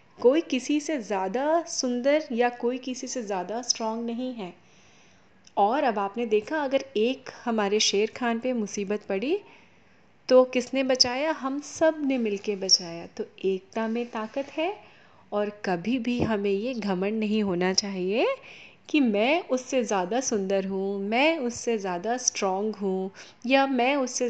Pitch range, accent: 200-255 Hz, native